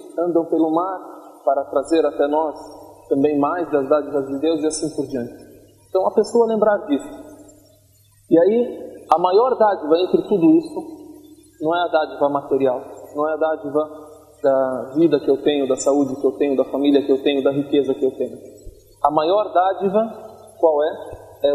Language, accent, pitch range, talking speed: Portuguese, Brazilian, 145-220 Hz, 180 wpm